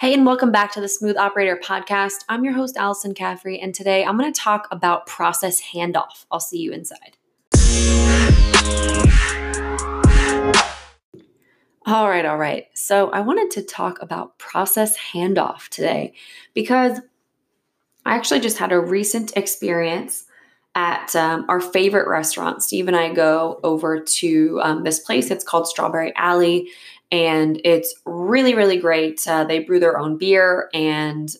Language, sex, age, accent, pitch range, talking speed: English, female, 20-39, American, 160-200 Hz, 150 wpm